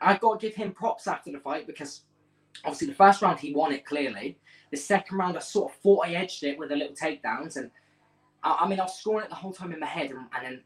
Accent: British